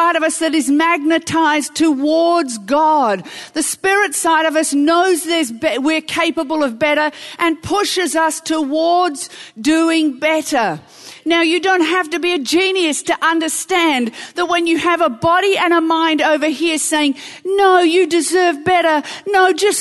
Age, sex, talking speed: 50-69, female, 165 wpm